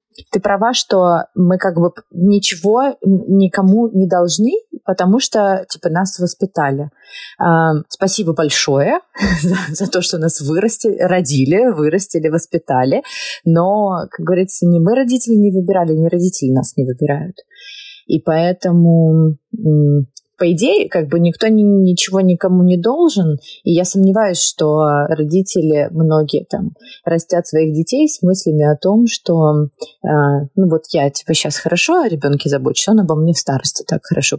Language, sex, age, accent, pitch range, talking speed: Russian, female, 20-39, native, 155-195 Hz, 145 wpm